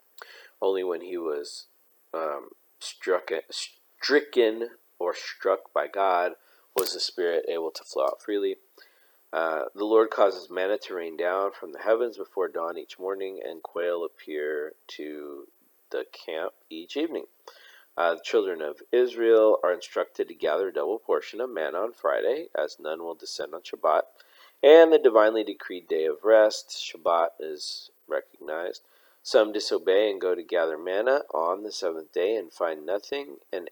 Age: 40-59